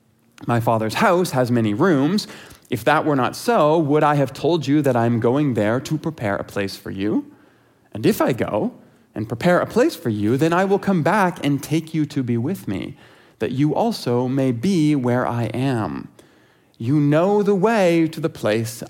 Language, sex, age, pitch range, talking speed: English, male, 30-49, 110-155 Hz, 200 wpm